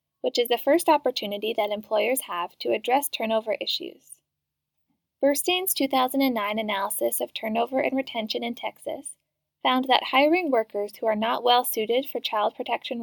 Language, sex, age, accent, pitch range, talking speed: English, female, 10-29, American, 220-285 Hz, 145 wpm